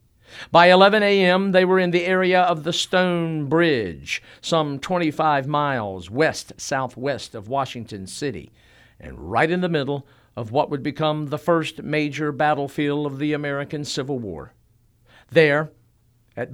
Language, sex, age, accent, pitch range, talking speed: English, male, 50-69, American, 120-165 Hz, 140 wpm